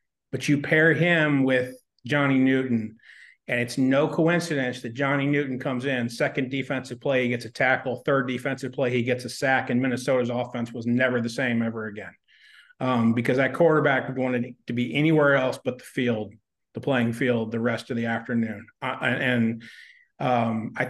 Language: English